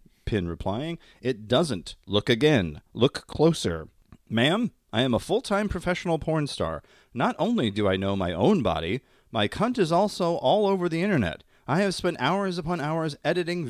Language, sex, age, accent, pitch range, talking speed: English, male, 30-49, American, 105-170 Hz, 170 wpm